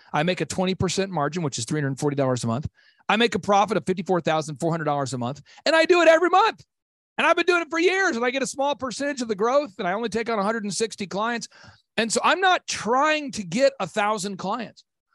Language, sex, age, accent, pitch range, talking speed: English, male, 40-59, American, 145-230 Hz, 220 wpm